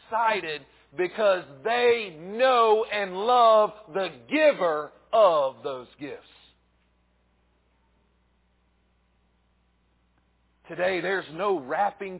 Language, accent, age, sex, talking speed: English, American, 50-69, male, 70 wpm